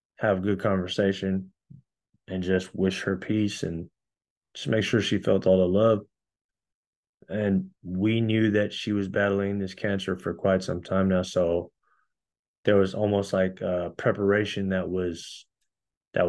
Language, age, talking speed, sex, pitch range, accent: English, 20-39, 155 wpm, male, 95-105 Hz, American